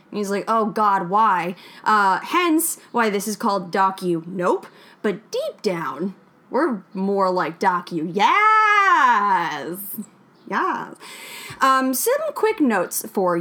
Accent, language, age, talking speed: American, English, 10-29, 120 wpm